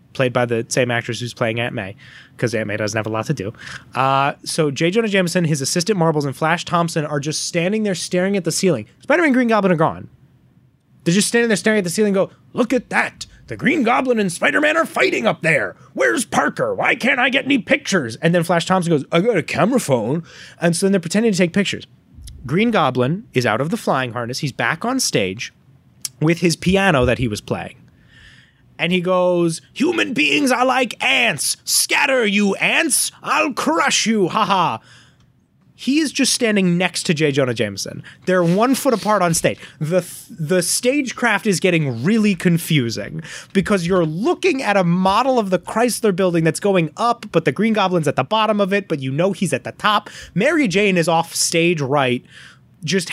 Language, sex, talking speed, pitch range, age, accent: English, male, 210 wpm, 150-210 Hz, 30-49, American